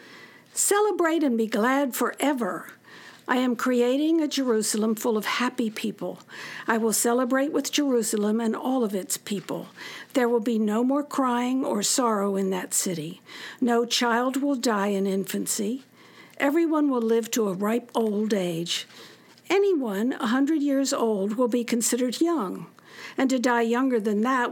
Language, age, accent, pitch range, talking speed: English, 60-79, American, 210-260 Hz, 155 wpm